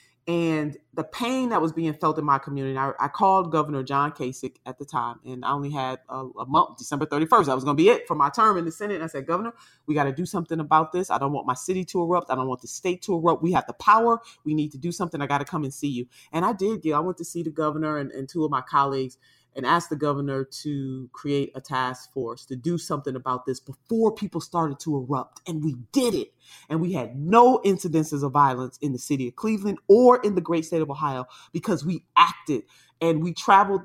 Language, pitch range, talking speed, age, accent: English, 140-190 Hz, 255 wpm, 30-49, American